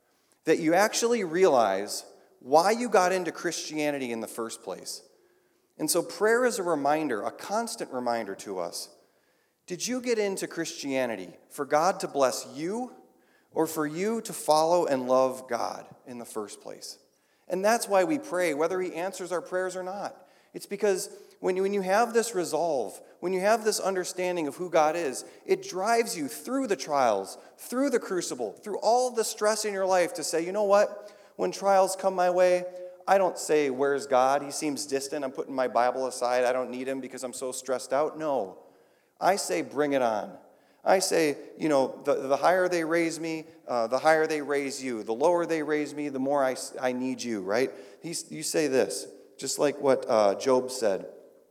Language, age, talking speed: English, 40-59, 195 wpm